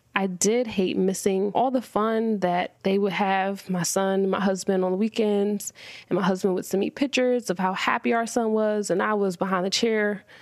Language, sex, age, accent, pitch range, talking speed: English, female, 20-39, American, 185-225 Hz, 220 wpm